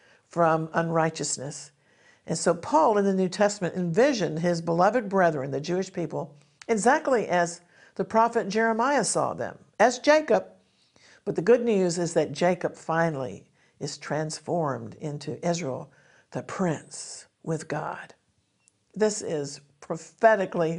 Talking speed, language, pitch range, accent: 125 wpm, English, 165-225 Hz, American